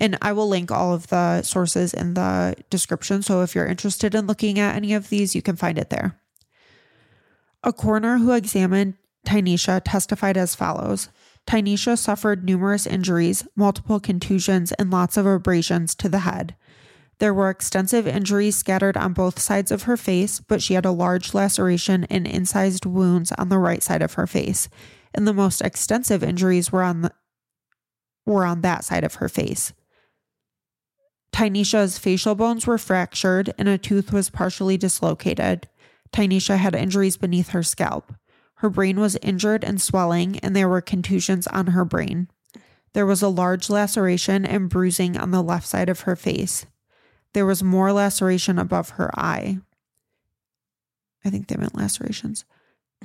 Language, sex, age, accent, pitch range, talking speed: English, female, 20-39, American, 180-205 Hz, 160 wpm